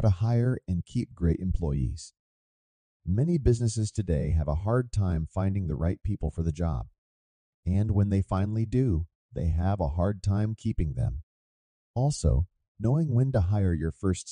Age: 40-59